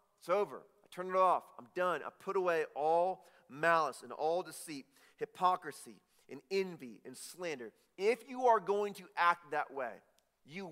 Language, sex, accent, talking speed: English, male, American, 170 wpm